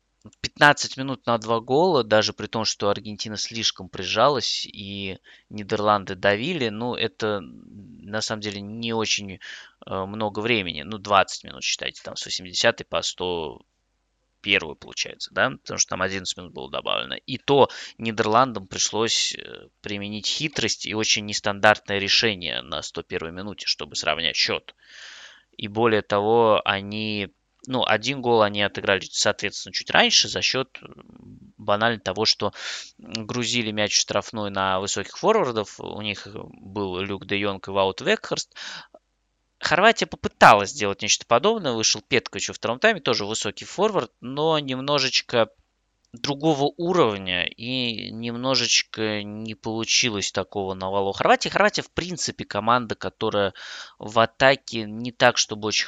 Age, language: 20-39, Russian